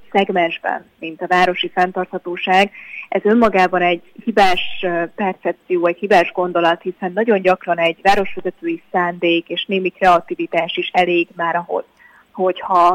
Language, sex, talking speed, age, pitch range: Hungarian, female, 125 wpm, 20-39, 175-195 Hz